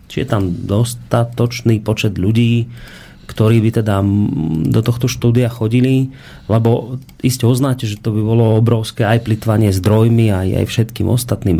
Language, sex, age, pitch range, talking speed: Slovak, male, 30-49, 100-120 Hz, 150 wpm